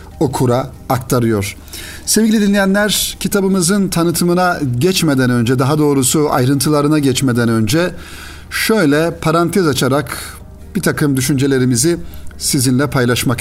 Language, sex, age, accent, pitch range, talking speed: Turkish, male, 50-69, native, 125-160 Hz, 95 wpm